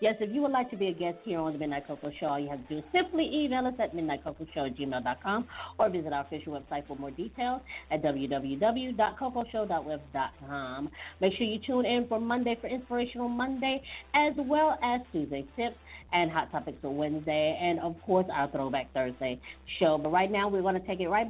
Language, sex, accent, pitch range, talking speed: English, female, American, 145-220 Hz, 210 wpm